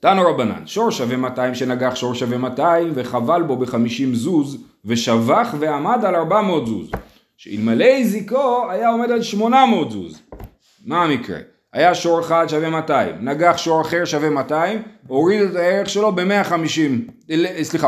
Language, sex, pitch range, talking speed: Hebrew, male, 145-205 Hz, 145 wpm